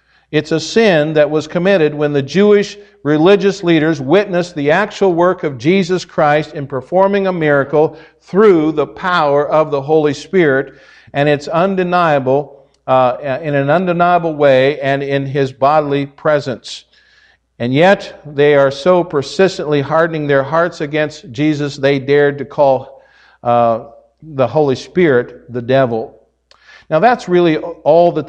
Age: 50-69